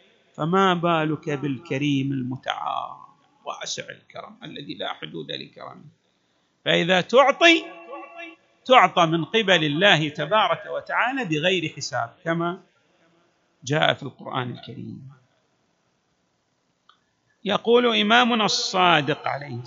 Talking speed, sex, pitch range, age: 90 wpm, male, 150-205 Hz, 50-69